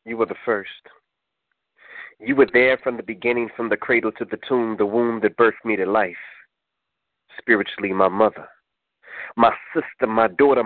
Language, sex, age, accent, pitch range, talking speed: English, male, 30-49, American, 110-150 Hz, 170 wpm